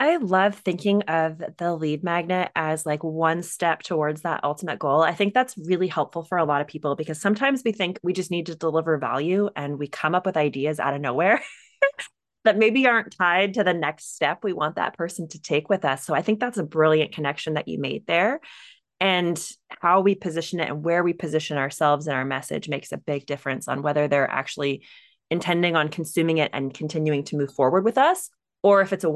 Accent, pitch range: American, 150-190 Hz